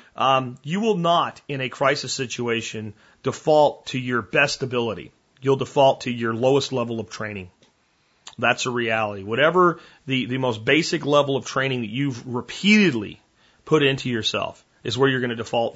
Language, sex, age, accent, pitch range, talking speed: English, male, 40-59, American, 115-140 Hz, 170 wpm